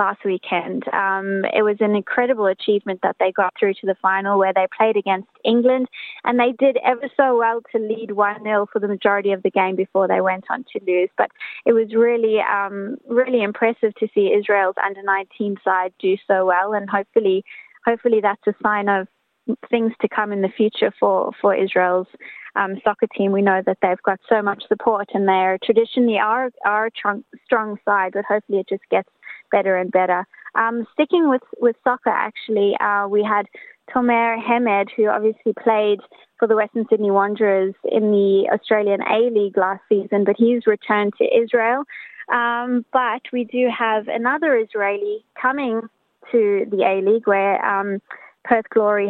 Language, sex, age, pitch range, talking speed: English, female, 20-39, 195-235 Hz, 175 wpm